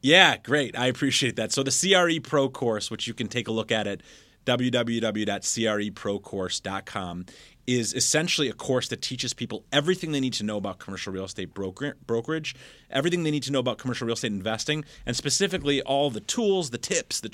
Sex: male